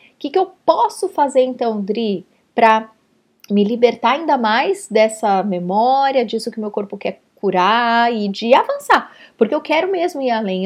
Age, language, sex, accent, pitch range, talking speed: 30-49, Portuguese, female, Brazilian, 205-280 Hz, 170 wpm